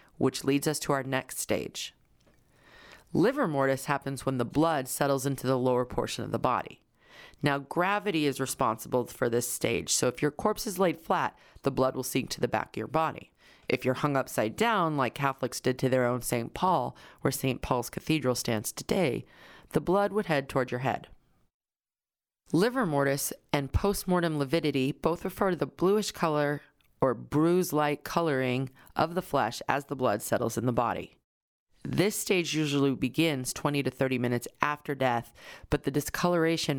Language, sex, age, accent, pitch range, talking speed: English, female, 30-49, American, 130-155 Hz, 175 wpm